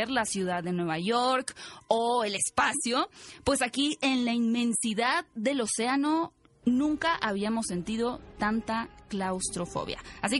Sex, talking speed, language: female, 120 wpm, Spanish